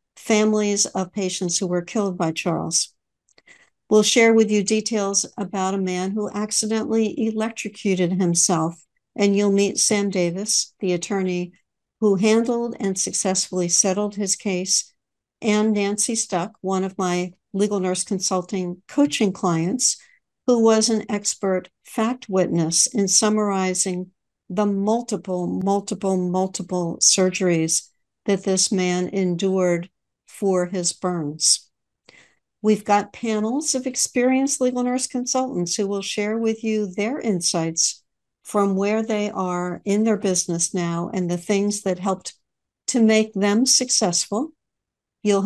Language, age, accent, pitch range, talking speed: English, 60-79, American, 185-225 Hz, 130 wpm